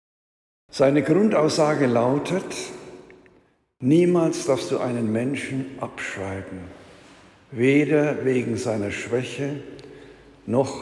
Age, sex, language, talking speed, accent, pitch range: 60-79, male, German, 80 wpm, German, 120-150 Hz